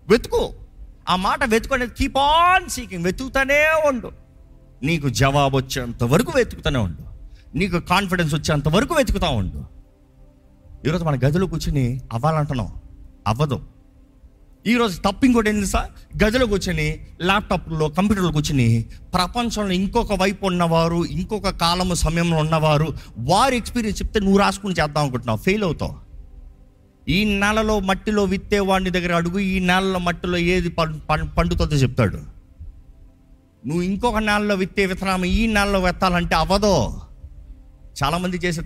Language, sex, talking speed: Telugu, male, 115 wpm